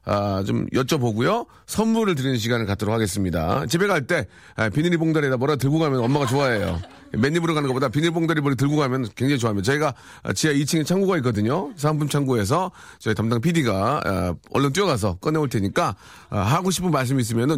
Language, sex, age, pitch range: Korean, male, 40-59, 120-175 Hz